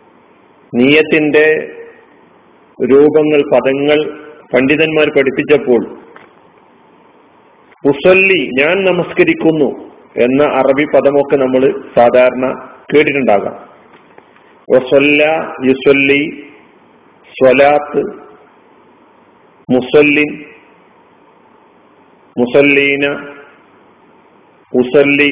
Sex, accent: male, native